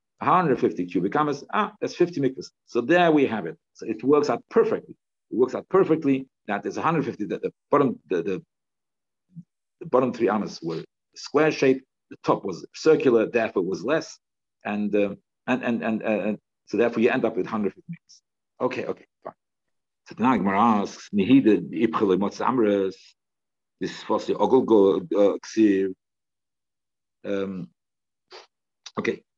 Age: 50-69